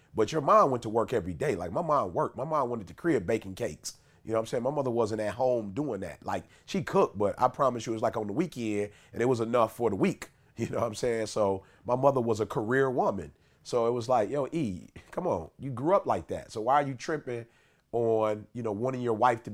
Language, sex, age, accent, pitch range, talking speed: English, male, 30-49, American, 110-130 Hz, 270 wpm